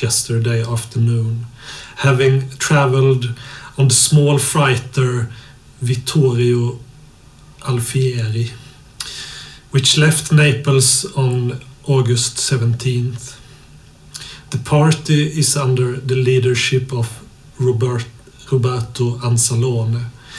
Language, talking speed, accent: Swedish, 75 wpm, native